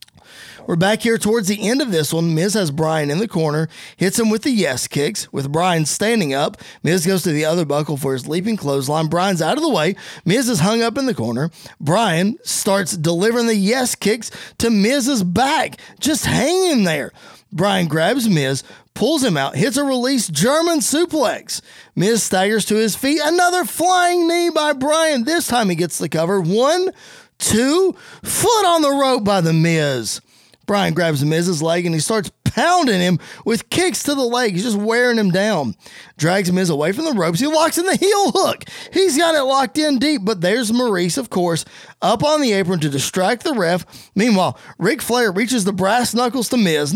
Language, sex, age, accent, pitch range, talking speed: English, male, 20-39, American, 175-270 Hz, 195 wpm